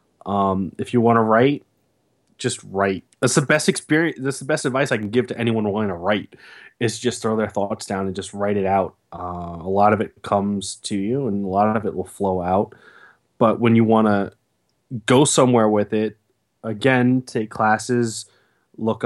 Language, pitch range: English, 100-120 Hz